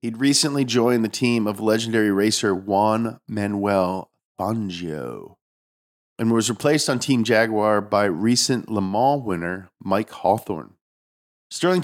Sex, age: male, 40-59